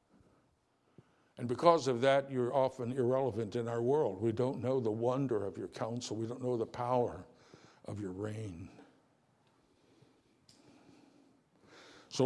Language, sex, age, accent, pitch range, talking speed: English, male, 60-79, American, 115-135 Hz, 130 wpm